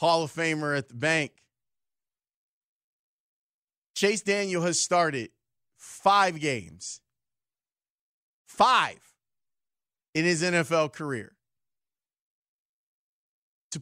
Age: 40-59